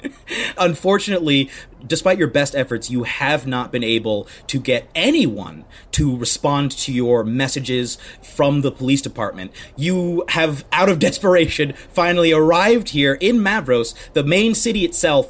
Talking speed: 140 wpm